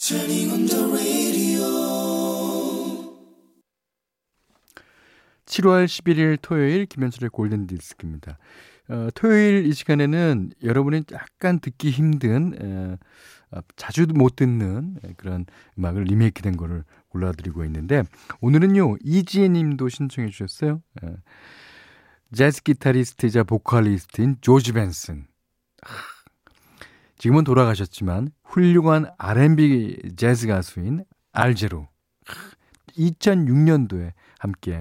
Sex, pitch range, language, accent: male, 90-145 Hz, Korean, native